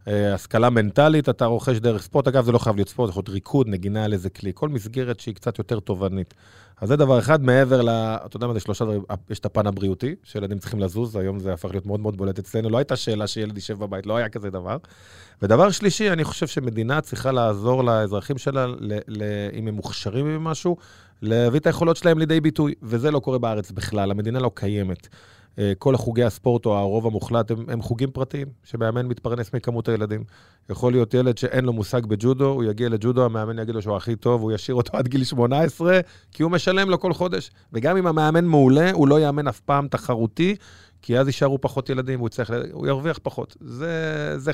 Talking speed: 205 wpm